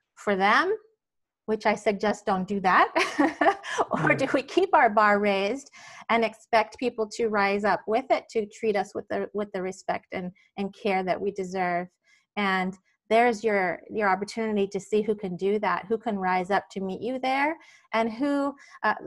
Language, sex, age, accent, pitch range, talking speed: English, female, 30-49, American, 185-225 Hz, 185 wpm